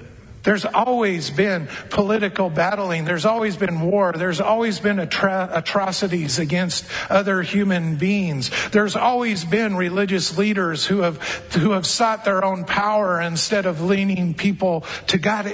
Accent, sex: American, male